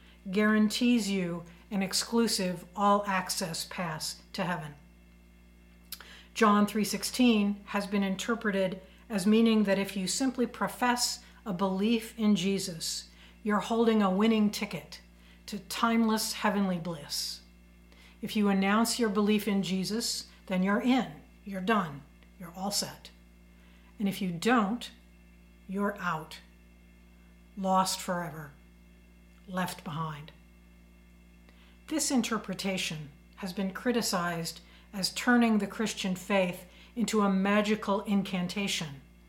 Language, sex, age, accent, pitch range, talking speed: English, female, 60-79, American, 155-210 Hz, 110 wpm